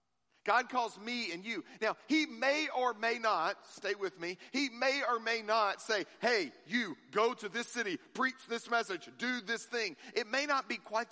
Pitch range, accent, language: 205-260 Hz, American, English